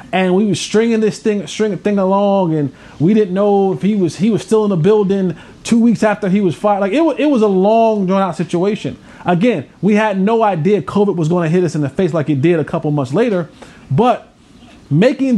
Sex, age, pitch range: male, 30-49, 180-225 Hz